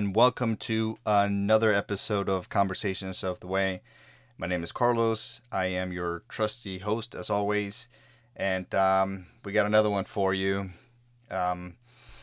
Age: 30-49